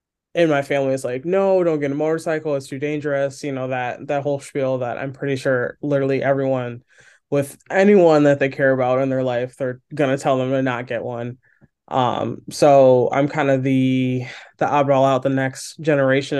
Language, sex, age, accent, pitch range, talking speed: English, male, 20-39, American, 130-145 Hz, 200 wpm